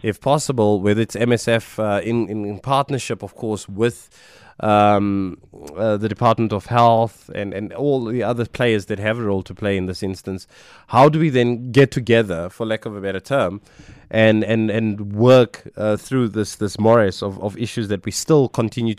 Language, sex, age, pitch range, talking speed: English, male, 20-39, 100-125 Hz, 195 wpm